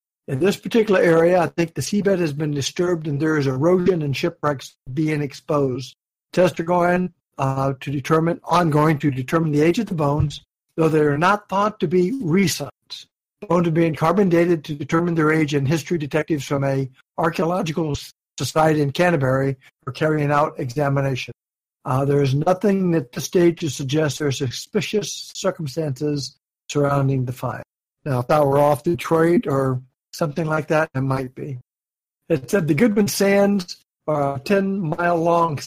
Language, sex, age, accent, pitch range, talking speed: English, male, 60-79, American, 140-180 Hz, 170 wpm